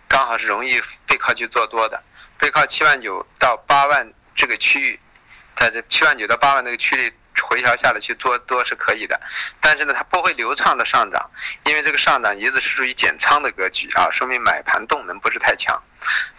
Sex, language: male, Chinese